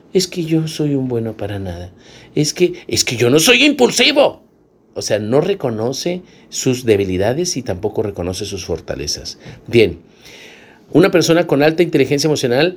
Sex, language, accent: male, Spanish, Mexican